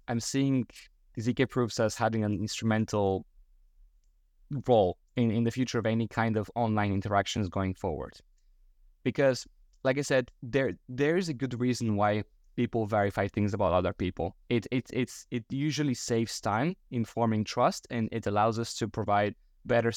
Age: 20-39